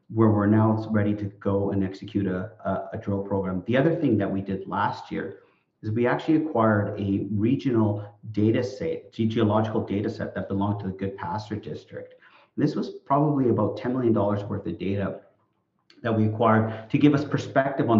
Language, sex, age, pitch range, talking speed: English, male, 40-59, 100-115 Hz, 185 wpm